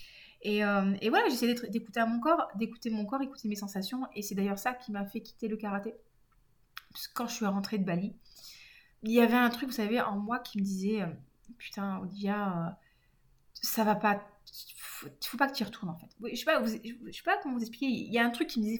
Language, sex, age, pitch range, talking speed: French, female, 20-39, 195-240 Hz, 245 wpm